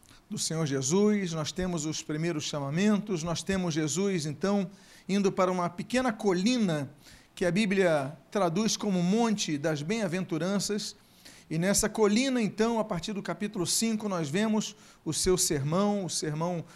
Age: 40-59